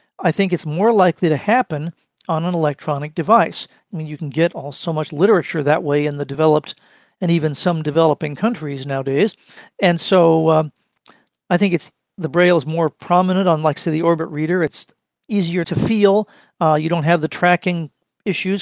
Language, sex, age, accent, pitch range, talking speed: English, male, 50-69, American, 150-180 Hz, 190 wpm